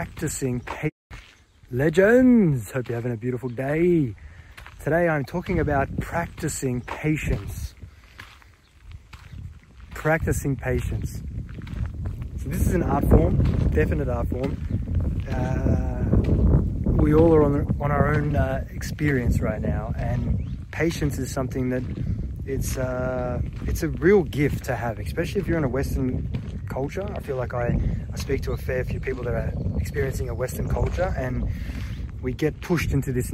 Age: 20-39